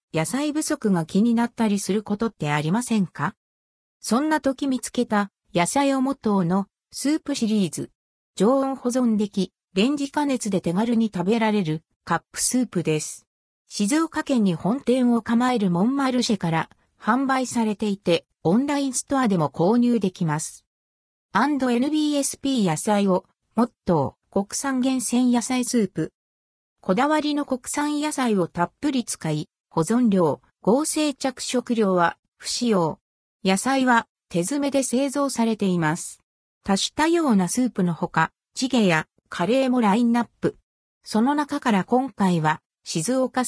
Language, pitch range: Japanese, 185-265 Hz